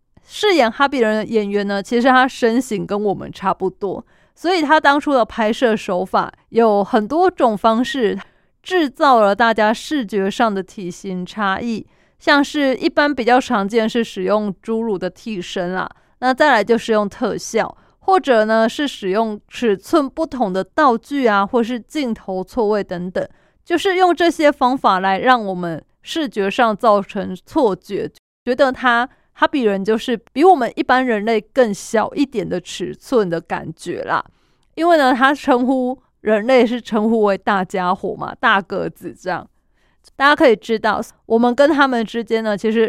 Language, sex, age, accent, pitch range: Chinese, female, 20-39, native, 200-265 Hz